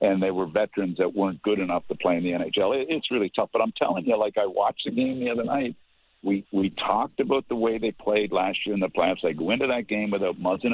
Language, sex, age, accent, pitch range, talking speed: English, male, 50-69, American, 105-145 Hz, 270 wpm